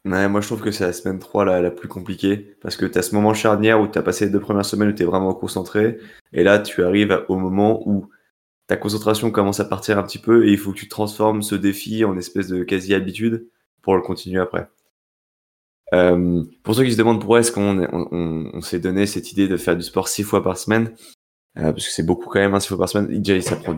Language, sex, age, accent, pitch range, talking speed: French, male, 20-39, French, 90-105 Hz, 255 wpm